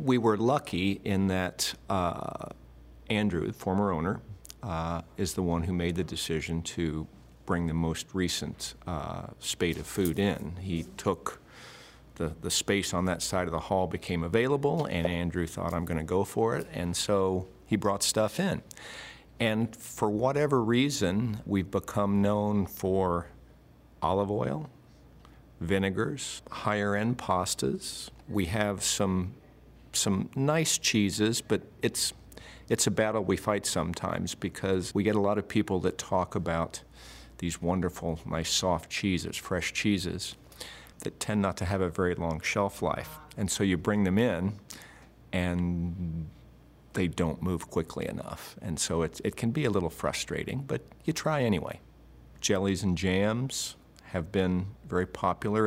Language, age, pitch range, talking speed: English, 50-69, 85-105 Hz, 155 wpm